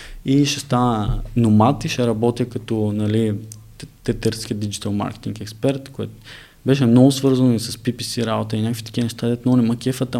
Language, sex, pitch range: Bulgarian, male, 110-130 Hz